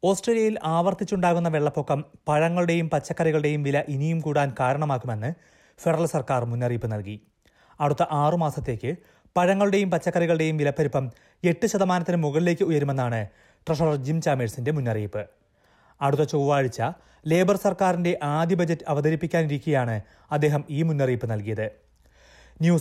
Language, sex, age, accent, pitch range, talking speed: Malayalam, male, 30-49, native, 130-170 Hz, 100 wpm